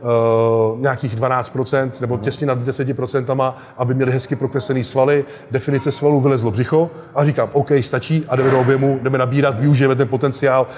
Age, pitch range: 30-49, 125-145 Hz